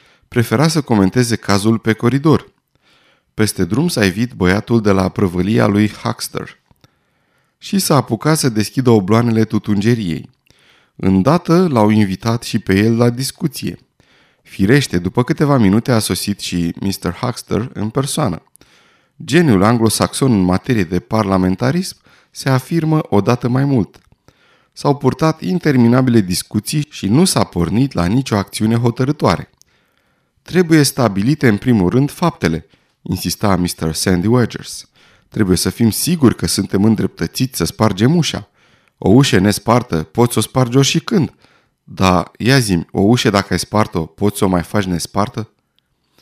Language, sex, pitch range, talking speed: Romanian, male, 100-135 Hz, 140 wpm